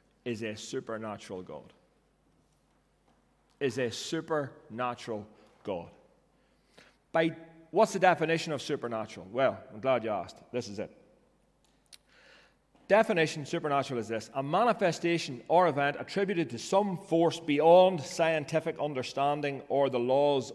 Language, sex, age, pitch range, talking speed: English, male, 30-49, 130-170 Hz, 115 wpm